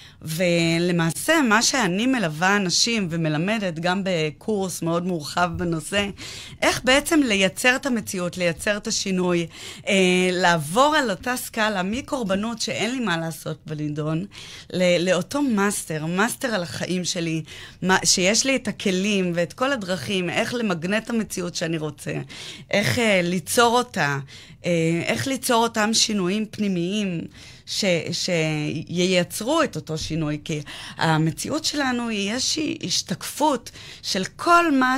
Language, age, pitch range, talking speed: Hebrew, 20-39, 170-225 Hz, 125 wpm